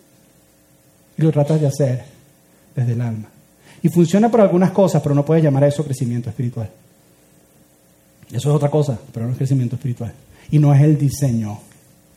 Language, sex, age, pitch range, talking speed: Spanish, male, 30-49, 115-155 Hz, 175 wpm